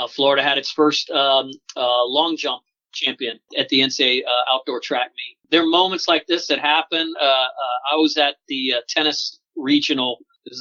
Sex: male